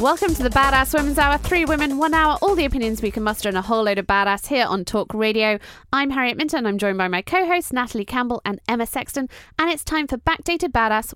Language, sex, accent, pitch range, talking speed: English, female, British, 195-275 Hz, 245 wpm